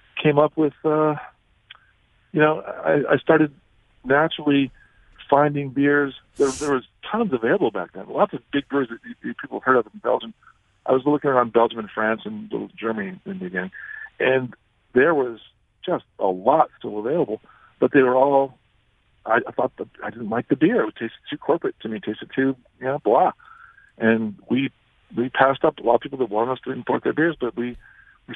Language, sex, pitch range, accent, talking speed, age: English, male, 110-145 Hz, American, 200 wpm, 50-69